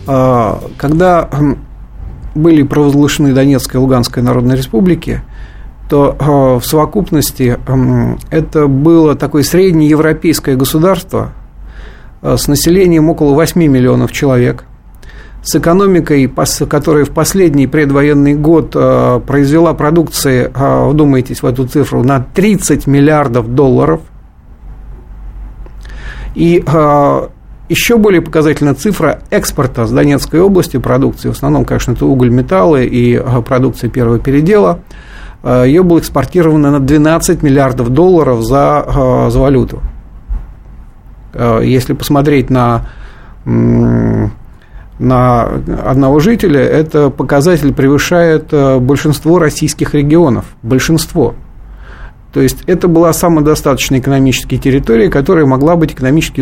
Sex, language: male, Russian